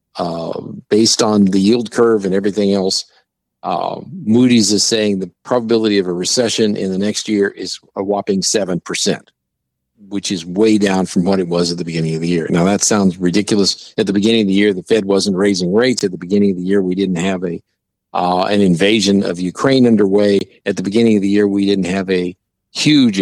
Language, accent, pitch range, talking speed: English, American, 95-110 Hz, 210 wpm